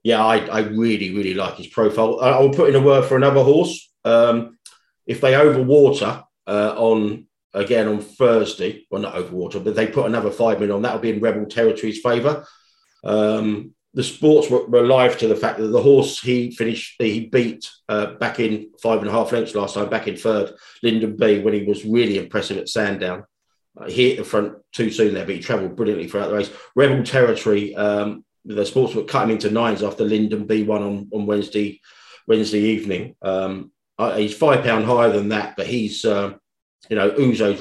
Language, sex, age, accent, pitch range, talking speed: English, male, 40-59, British, 105-115 Hz, 200 wpm